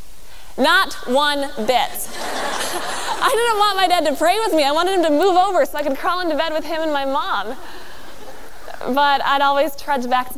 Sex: female